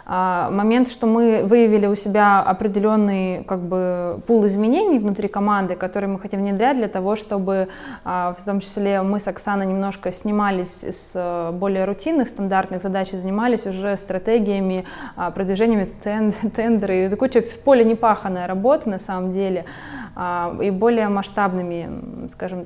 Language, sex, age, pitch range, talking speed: Russian, female, 20-39, 185-210 Hz, 130 wpm